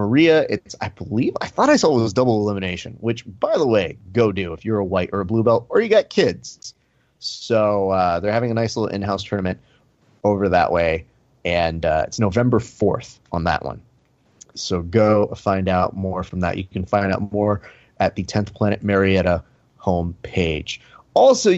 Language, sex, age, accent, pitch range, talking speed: English, male, 30-49, American, 100-125 Hz, 190 wpm